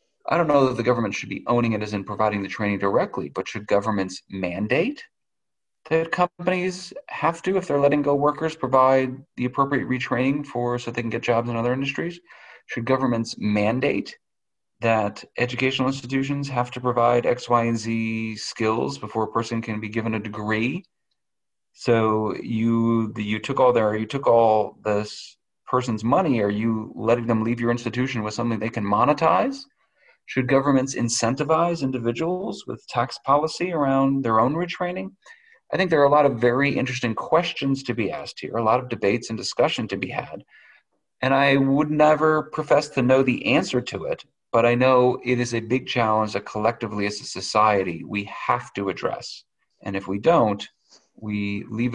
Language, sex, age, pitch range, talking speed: English, male, 30-49, 110-140 Hz, 180 wpm